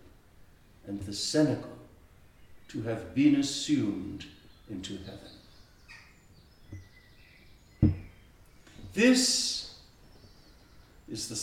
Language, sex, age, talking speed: English, male, 60-79, 65 wpm